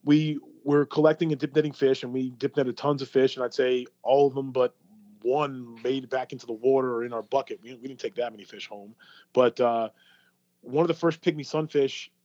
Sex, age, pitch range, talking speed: male, 30-49, 120-135 Hz, 220 wpm